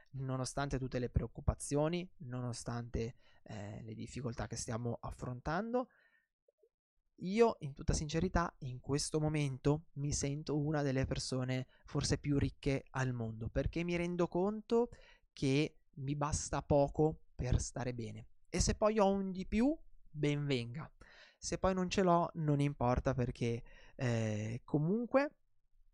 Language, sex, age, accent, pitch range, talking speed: Italian, male, 20-39, native, 130-175 Hz, 135 wpm